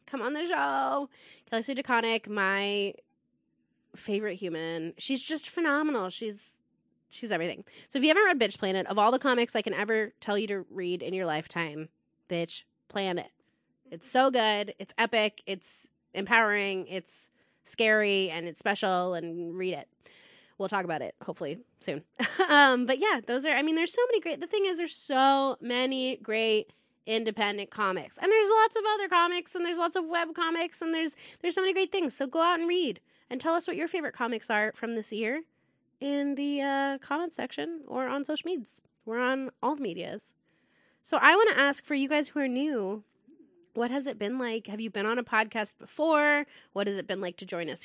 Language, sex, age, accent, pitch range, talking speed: English, female, 20-39, American, 205-305 Hz, 200 wpm